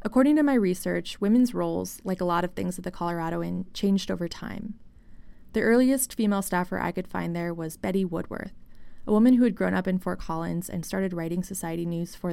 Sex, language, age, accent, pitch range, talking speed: female, English, 20-39, American, 175-205 Hz, 215 wpm